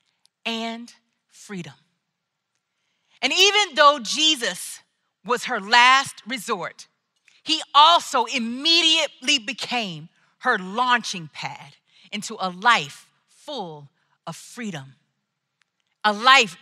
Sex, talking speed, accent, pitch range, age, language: female, 90 wpm, American, 205-310 Hz, 40-59, English